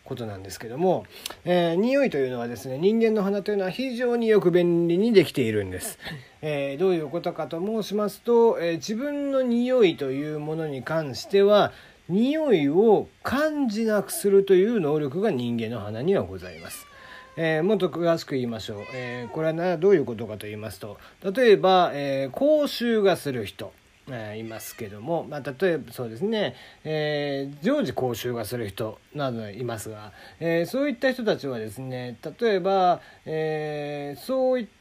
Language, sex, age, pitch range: Japanese, male, 40-59, 135-215 Hz